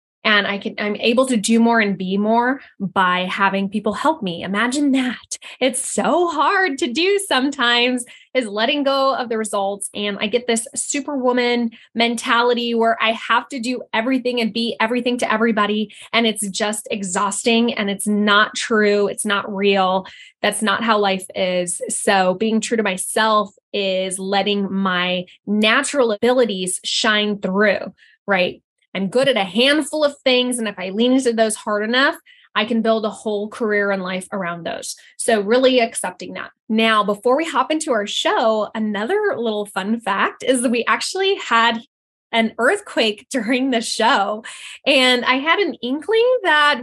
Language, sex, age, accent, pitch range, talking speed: English, female, 20-39, American, 210-255 Hz, 170 wpm